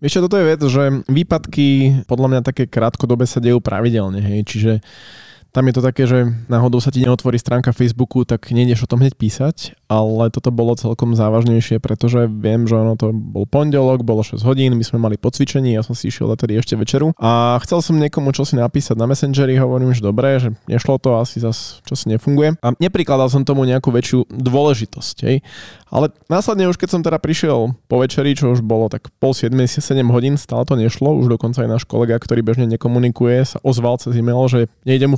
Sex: male